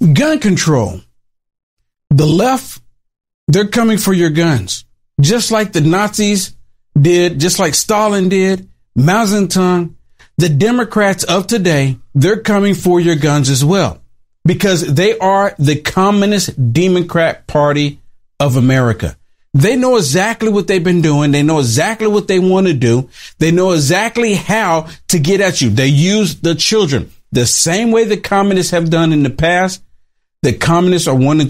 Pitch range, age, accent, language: 135-190 Hz, 50-69, American, English